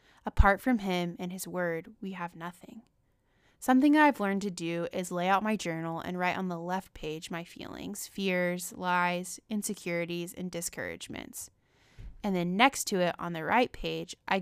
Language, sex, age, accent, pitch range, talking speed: English, female, 20-39, American, 170-205 Hz, 175 wpm